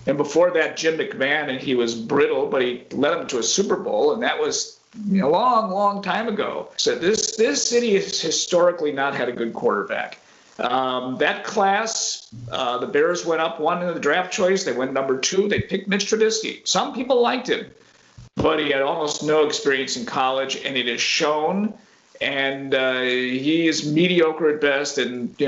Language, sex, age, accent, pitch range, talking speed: English, male, 50-69, American, 150-220 Hz, 195 wpm